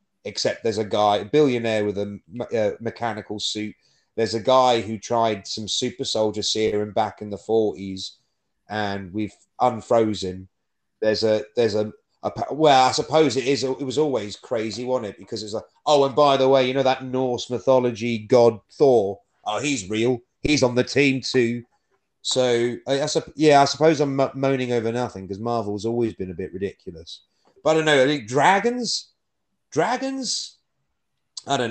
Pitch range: 105-130 Hz